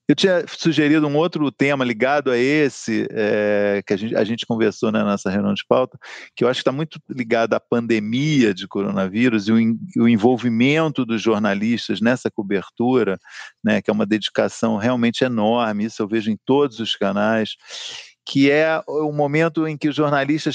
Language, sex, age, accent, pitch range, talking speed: Portuguese, male, 50-69, Brazilian, 115-145 Hz, 175 wpm